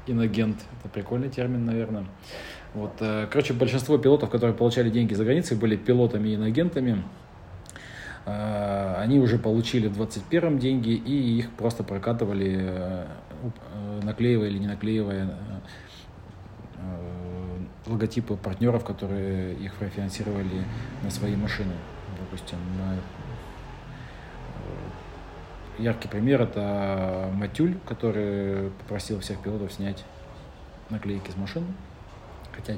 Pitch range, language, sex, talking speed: 95-115 Hz, Russian, male, 100 wpm